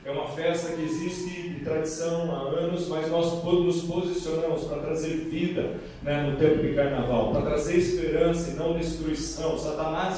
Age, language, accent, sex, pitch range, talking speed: 40-59, Portuguese, Brazilian, male, 170-215 Hz, 165 wpm